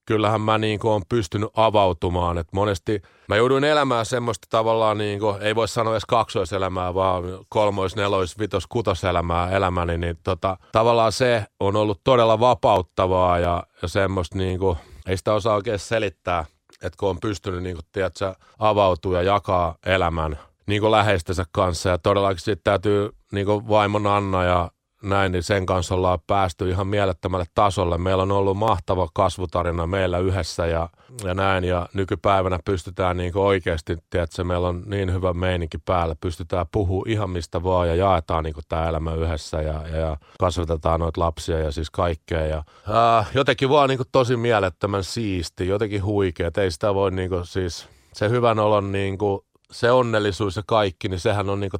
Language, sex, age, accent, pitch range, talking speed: Finnish, male, 30-49, native, 90-105 Hz, 165 wpm